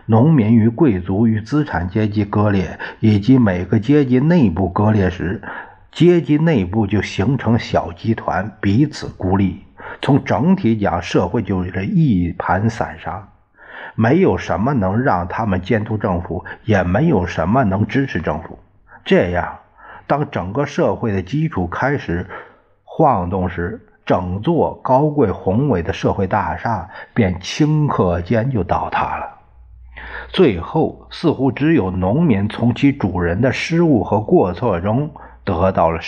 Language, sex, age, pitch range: Chinese, male, 50-69, 90-130 Hz